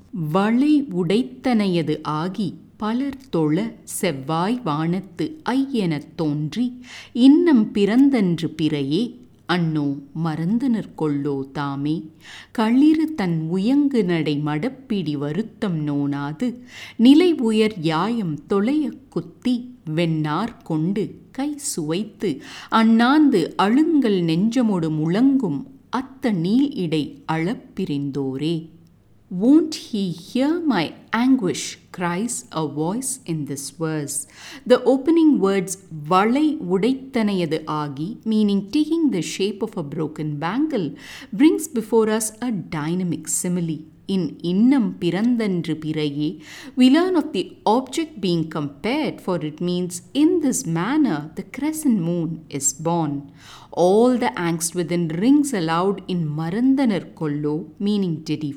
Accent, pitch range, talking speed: Indian, 160-245 Hz, 105 wpm